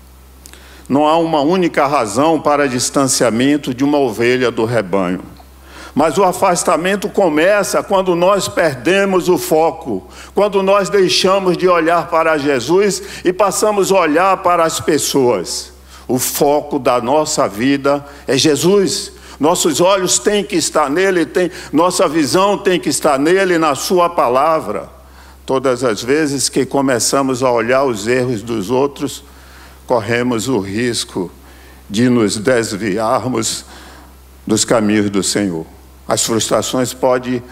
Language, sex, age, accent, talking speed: Portuguese, male, 60-79, Brazilian, 130 wpm